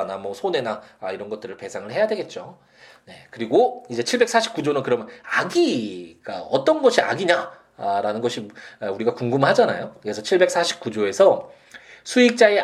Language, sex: Korean, male